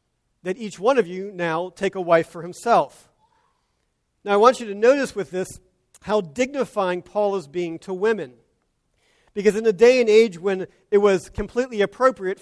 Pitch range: 185-215 Hz